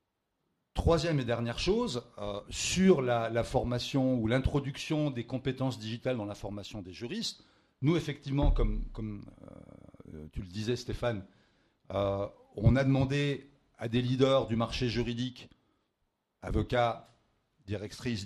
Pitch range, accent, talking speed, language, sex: 105-140 Hz, French, 130 wpm, French, male